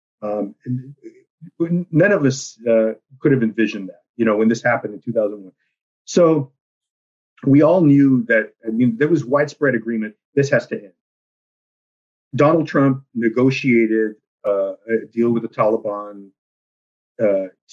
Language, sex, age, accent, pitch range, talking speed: English, male, 40-59, American, 115-140 Hz, 140 wpm